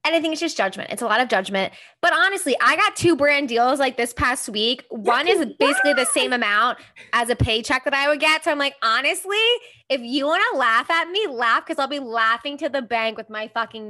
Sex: female